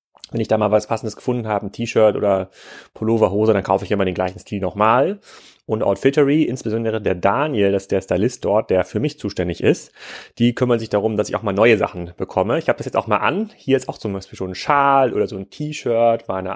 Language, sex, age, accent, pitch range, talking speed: German, male, 30-49, German, 100-135 Hz, 245 wpm